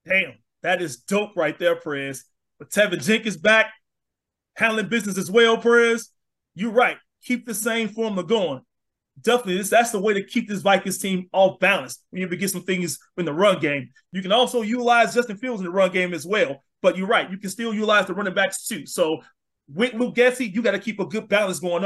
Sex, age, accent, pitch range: male, 30-49, American, 180-220 Hz